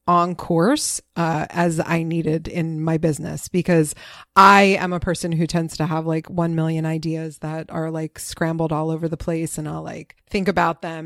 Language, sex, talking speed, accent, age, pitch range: English, female, 195 wpm, American, 30-49, 155-175 Hz